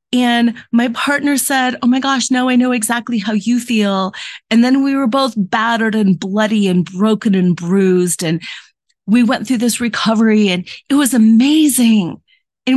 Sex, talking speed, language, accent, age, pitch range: female, 175 wpm, English, American, 30-49, 205-265 Hz